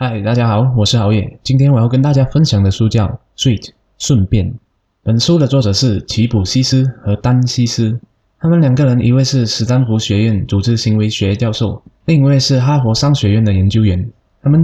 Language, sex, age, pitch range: Chinese, male, 10-29, 105-130 Hz